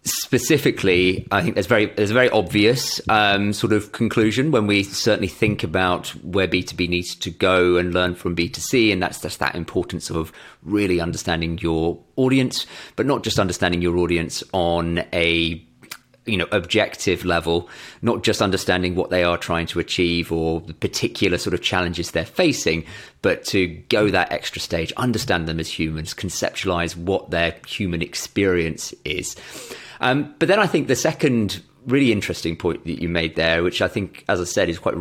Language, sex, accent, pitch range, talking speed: English, male, British, 85-105 Hz, 180 wpm